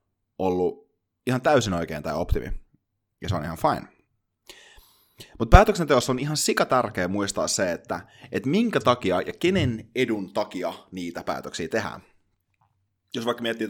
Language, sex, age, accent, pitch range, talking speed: Finnish, male, 30-49, native, 95-130 Hz, 145 wpm